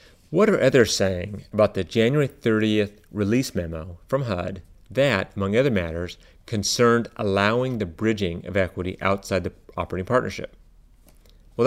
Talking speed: 140 wpm